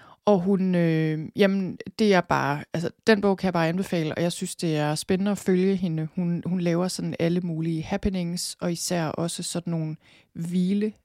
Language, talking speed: Danish, 190 wpm